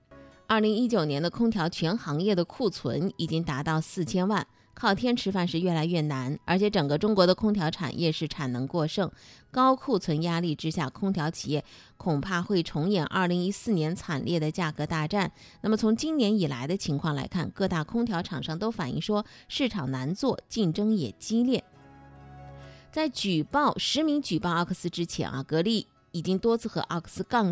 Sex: female